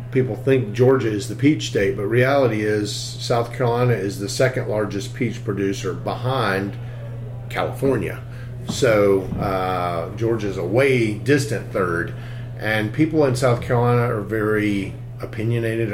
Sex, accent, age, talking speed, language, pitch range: male, American, 40-59, 135 wpm, English, 105-125 Hz